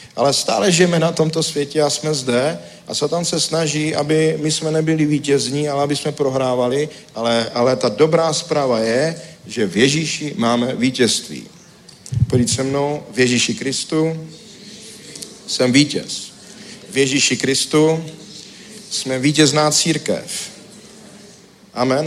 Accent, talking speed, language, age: native, 130 wpm, Czech, 50-69